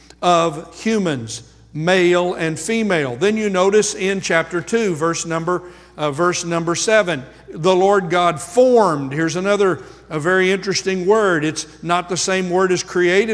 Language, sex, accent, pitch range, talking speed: English, male, American, 165-205 Hz, 140 wpm